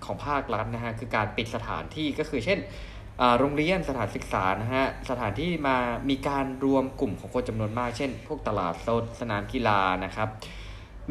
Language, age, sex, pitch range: Thai, 20-39, male, 100-130 Hz